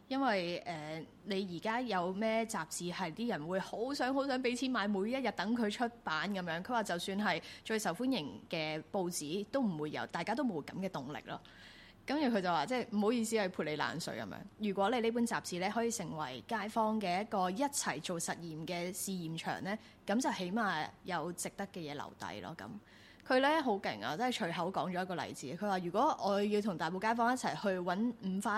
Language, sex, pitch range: Chinese, female, 175-230 Hz